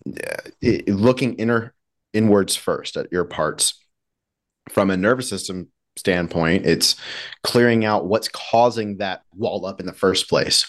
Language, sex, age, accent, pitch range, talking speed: English, male, 30-49, American, 90-105 Hz, 145 wpm